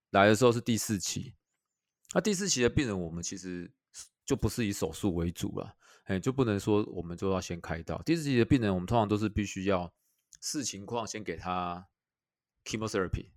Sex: male